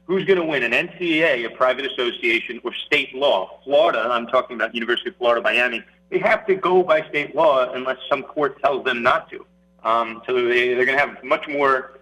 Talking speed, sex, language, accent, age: 220 wpm, male, English, American, 40-59